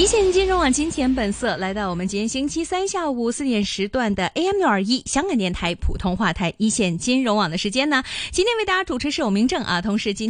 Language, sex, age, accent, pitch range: Chinese, female, 20-39, native, 190-260 Hz